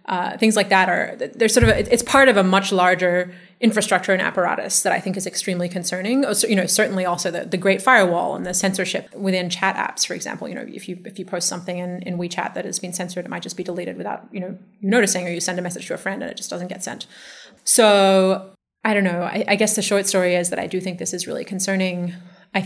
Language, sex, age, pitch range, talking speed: English, female, 20-39, 180-200 Hz, 260 wpm